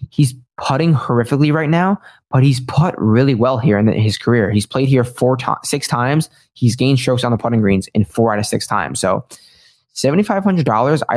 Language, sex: English, male